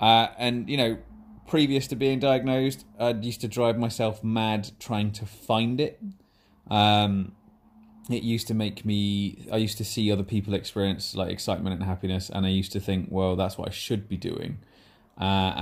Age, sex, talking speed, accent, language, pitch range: 20-39, male, 185 wpm, British, English, 95-105 Hz